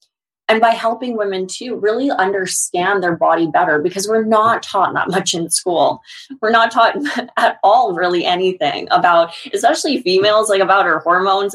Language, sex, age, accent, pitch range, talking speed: English, female, 20-39, American, 175-230 Hz, 165 wpm